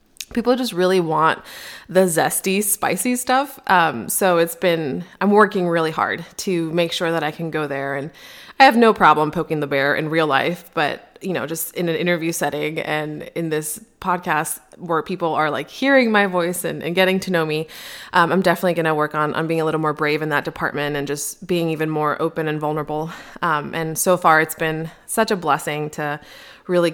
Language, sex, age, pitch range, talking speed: English, female, 20-39, 150-175 Hz, 210 wpm